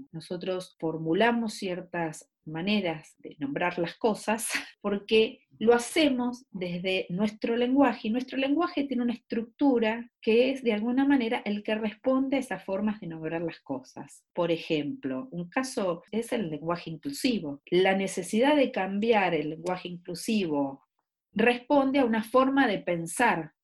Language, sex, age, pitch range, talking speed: Spanish, female, 40-59, 175-245 Hz, 140 wpm